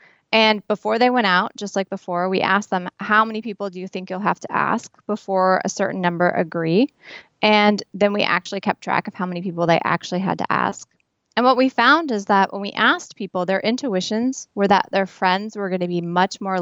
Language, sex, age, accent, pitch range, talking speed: English, female, 20-39, American, 180-220 Hz, 230 wpm